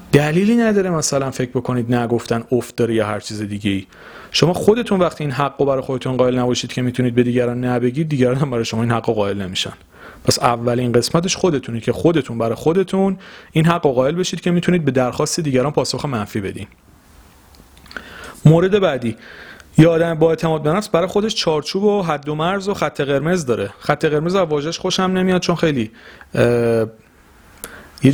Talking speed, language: 170 wpm, Persian